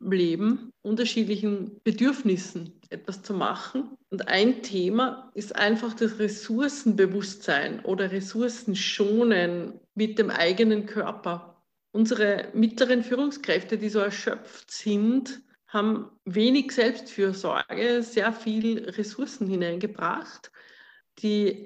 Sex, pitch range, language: female, 195-235 Hz, German